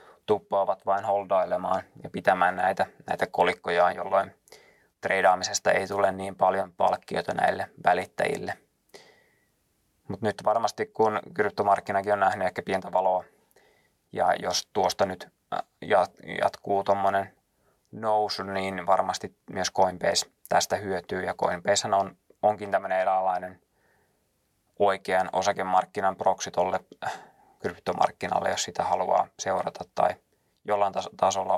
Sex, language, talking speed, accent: male, Finnish, 105 wpm, native